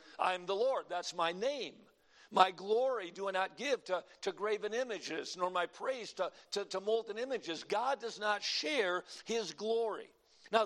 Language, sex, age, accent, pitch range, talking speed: English, male, 50-69, American, 185-260 Hz, 175 wpm